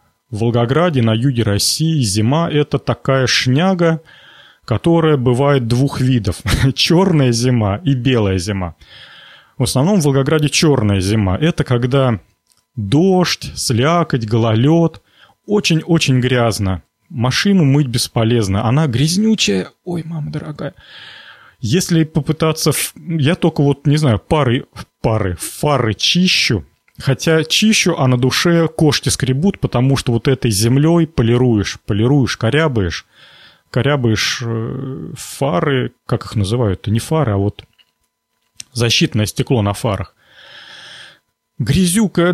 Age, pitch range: 30-49, 110-155 Hz